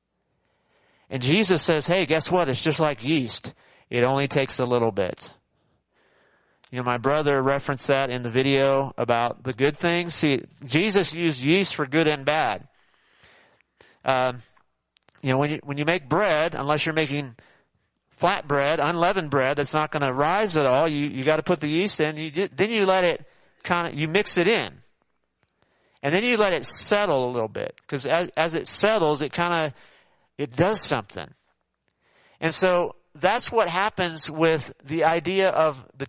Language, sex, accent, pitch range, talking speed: English, male, American, 130-175 Hz, 180 wpm